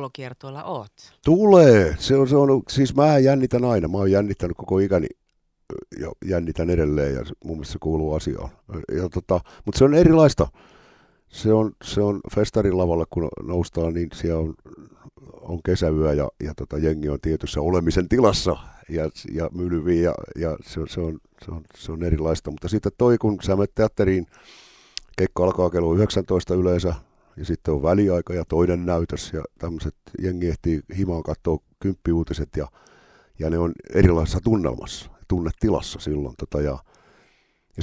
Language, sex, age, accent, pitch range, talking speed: Finnish, male, 50-69, native, 80-105 Hz, 160 wpm